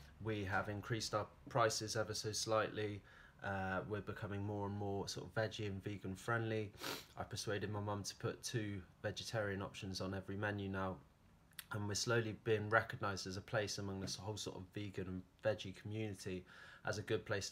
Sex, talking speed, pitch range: male, 185 wpm, 95-110 Hz